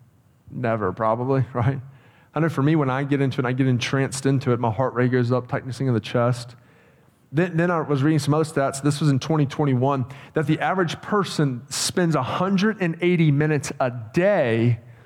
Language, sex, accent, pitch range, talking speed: English, male, American, 125-155 Hz, 190 wpm